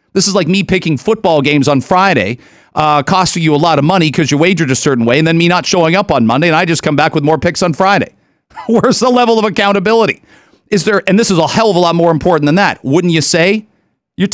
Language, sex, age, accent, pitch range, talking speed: English, male, 40-59, American, 140-200 Hz, 265 wpm